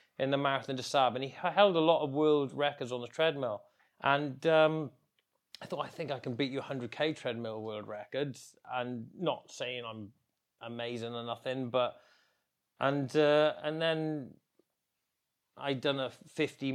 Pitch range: 115-140 Hz